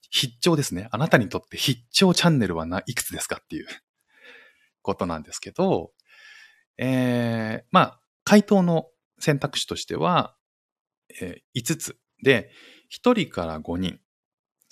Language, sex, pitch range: Japanese, male, 110-175 Hz